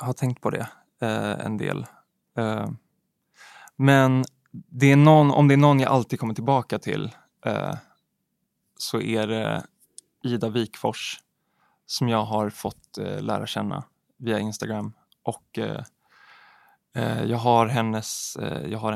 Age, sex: 20-39, male